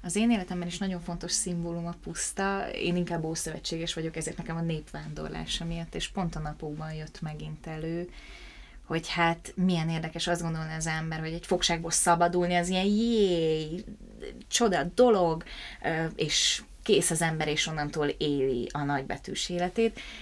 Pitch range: 155-180 Hz